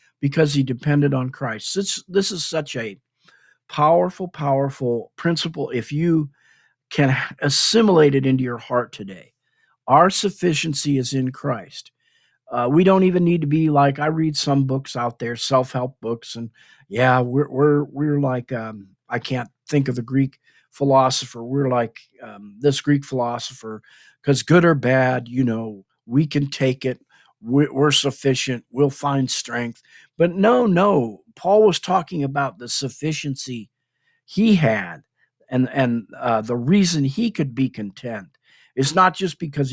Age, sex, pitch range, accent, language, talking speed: 50-69, male, 125-150 Hz, American, English, 155 wpm